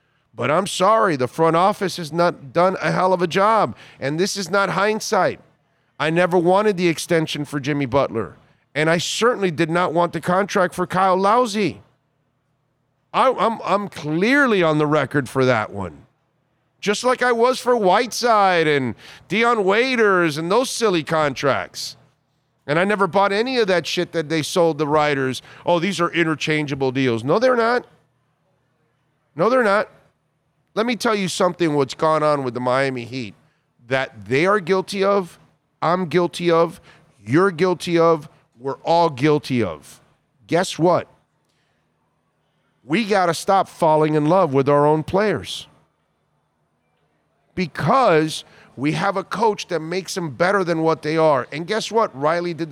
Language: English